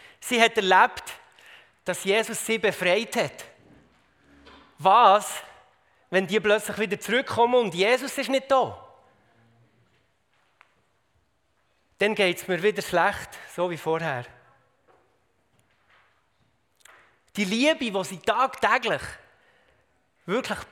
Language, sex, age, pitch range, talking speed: German, male, 30-49, 180-225 Hz, 100 wpm